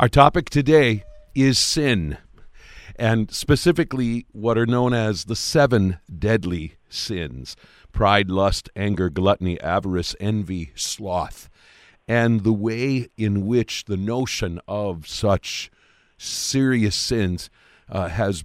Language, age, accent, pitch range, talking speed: English, 50-69, American, 95-115 Hz, 115 wpm